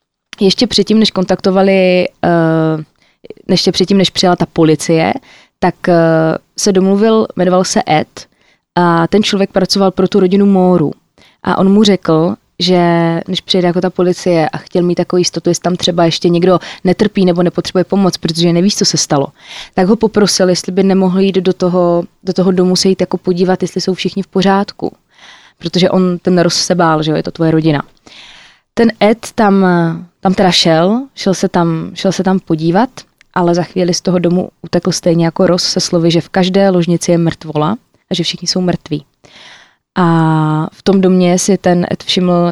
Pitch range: 170-190 Hz